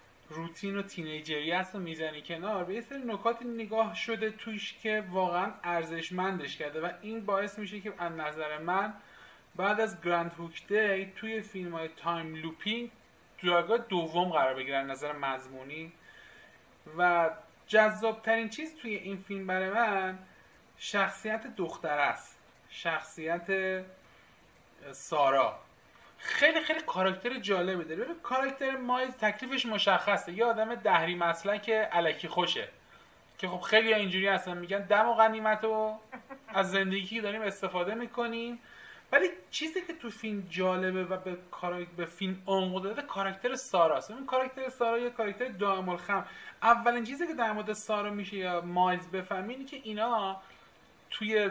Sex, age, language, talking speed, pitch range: male, 30-49, Persian, 135 wpm, 180-225 Hz